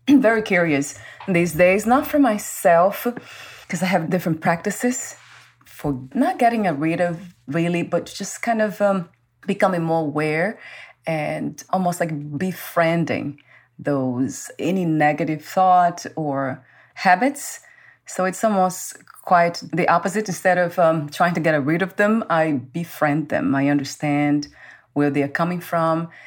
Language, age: English, 30-49